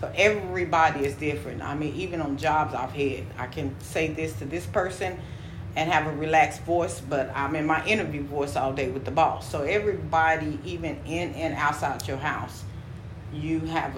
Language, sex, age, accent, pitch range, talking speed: English, female, 40-59, American, 135-160 Hz, 190 wpm